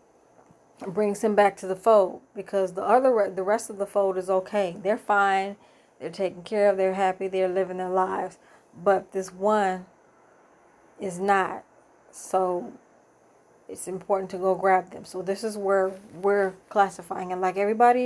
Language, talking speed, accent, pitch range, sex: English, 165 wpm, American, 185-215 Hz, female